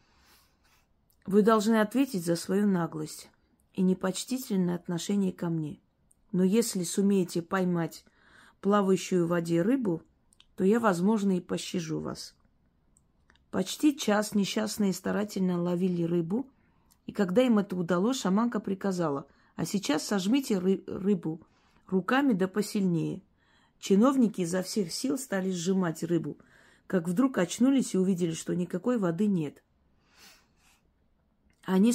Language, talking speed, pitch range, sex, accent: Russian, 115 wpm, 165-205 Hz, female, native